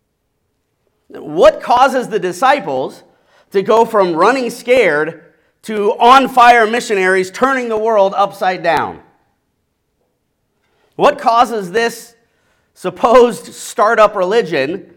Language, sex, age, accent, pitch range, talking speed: English, male, 40-59, American, 160-230 Hz, 90 wpm